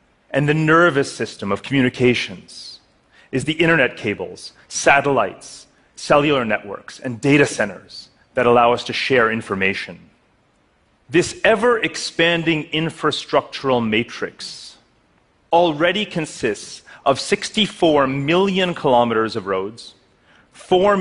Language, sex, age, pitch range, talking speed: English, male, 30-49, 110-165 Hz, 100 wpm